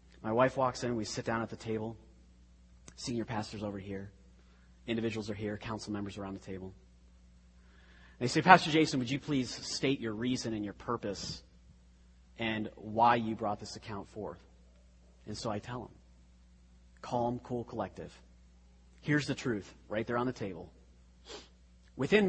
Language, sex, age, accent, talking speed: English, male, 30-49, American, 160 wpm